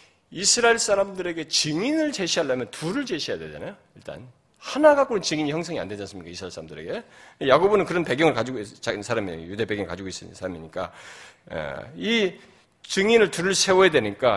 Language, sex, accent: Korean, male, native